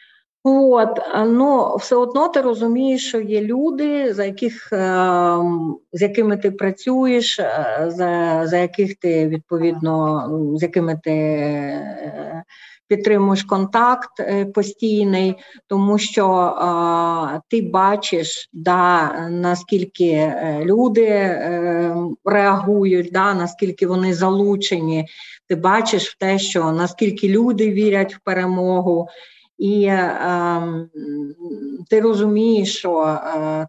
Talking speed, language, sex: 95 wpm, Ukrainian, female